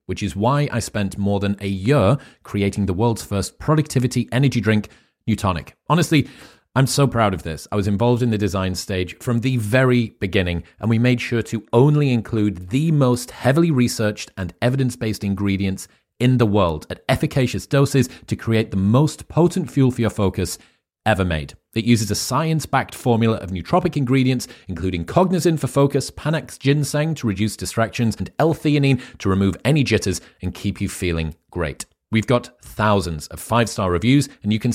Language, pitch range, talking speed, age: English, 95-130 Hz, 175 wpm, 30-49